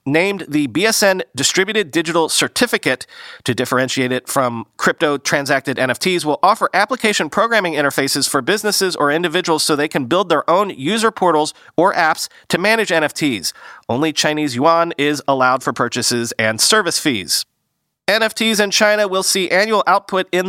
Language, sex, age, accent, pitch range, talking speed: English, male, 30-49, American, 135-180 Hz, 150 wpm